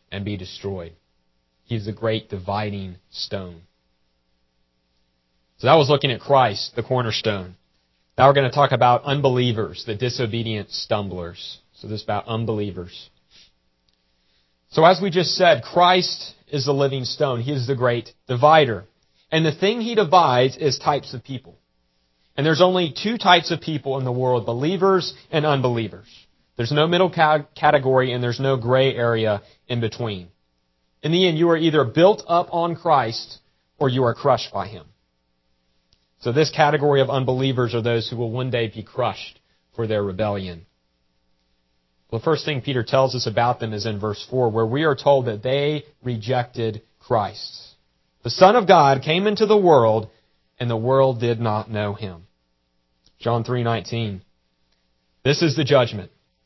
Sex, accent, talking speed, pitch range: male, American, 165 wpm, 90-140 Hz